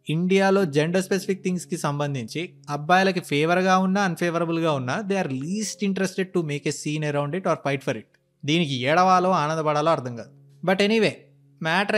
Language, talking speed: Telugu, 160 wpm